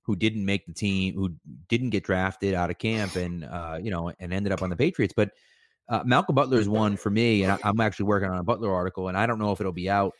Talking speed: 275 wpm